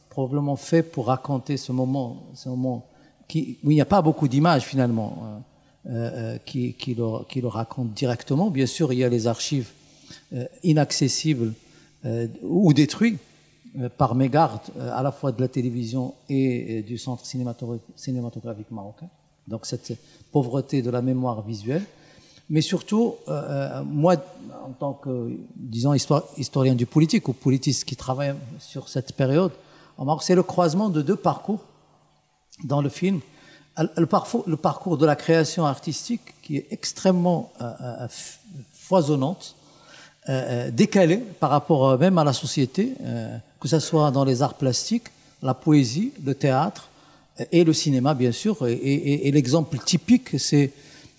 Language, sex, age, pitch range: French, male, 50-69, 130-160 Hz